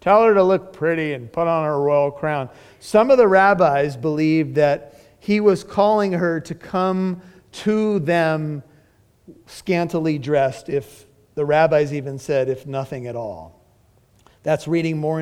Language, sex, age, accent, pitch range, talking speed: English, male, 40-59, American, 145-210 Hz, 155 wpm